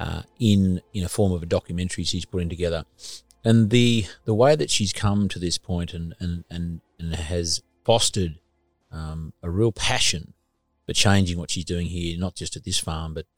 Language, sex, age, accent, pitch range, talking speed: English, male, 40-59, Australian, 85-100 Hz, 195 wpm